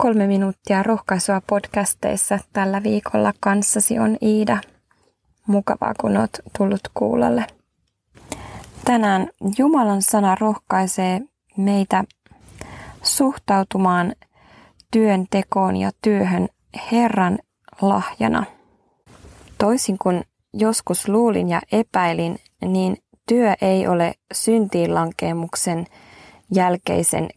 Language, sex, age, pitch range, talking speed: Finnish, female, 20-39, 180-220 Hz, 80 wpm